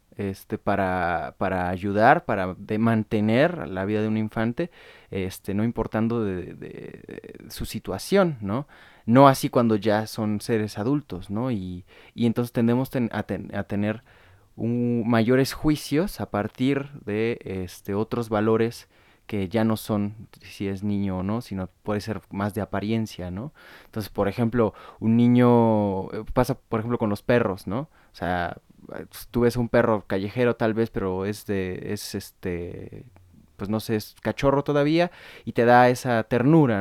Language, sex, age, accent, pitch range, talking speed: Spanish, male, 20-39, Mexican, 100-120 Hz, 165 wpm